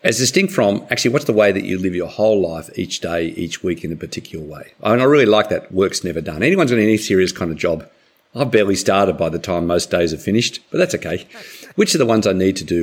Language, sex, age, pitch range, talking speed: English, male, 50-69, 85-115 Hz, 275 wpm